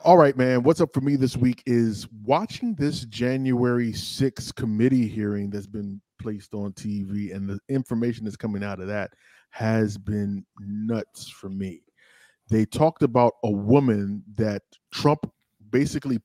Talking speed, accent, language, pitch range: 155 wpm, American, English, 110-135 Hz